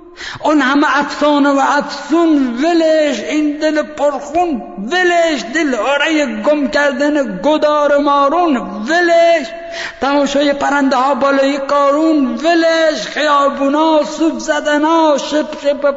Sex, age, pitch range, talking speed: male, 60-79, 275-330 Hz, 110 wpm